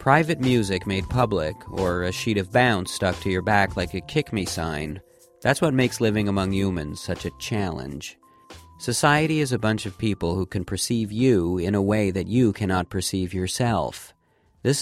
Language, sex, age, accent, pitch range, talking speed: English, male, 40-59, American, 90-115 Hz, 180 wpm